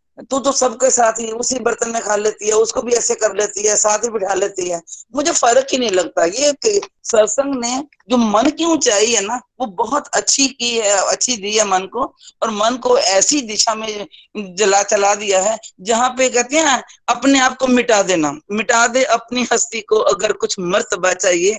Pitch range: 200-250 Hz